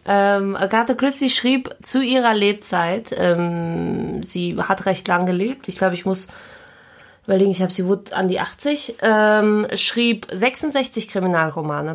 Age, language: 20-39, German